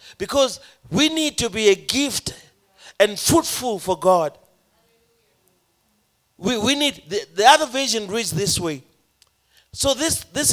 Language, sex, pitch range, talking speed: English, male, 195-265 Hz, 135 wpm